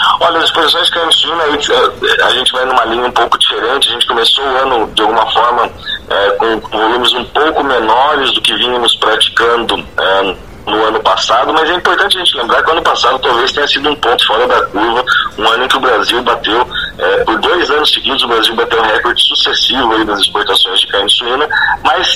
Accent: Brazilian